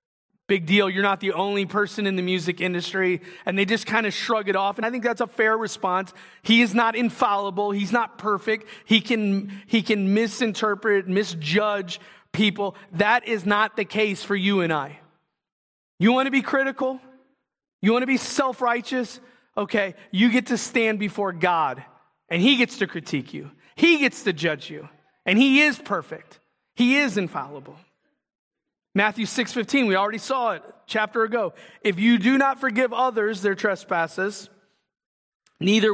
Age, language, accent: 30-49, English, American